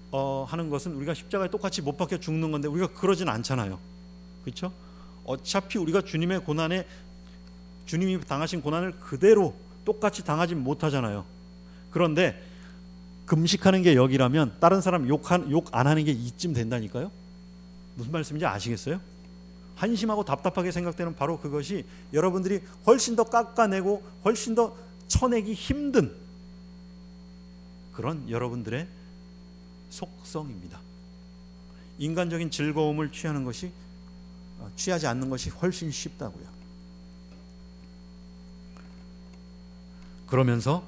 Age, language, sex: 40-59, Korean, male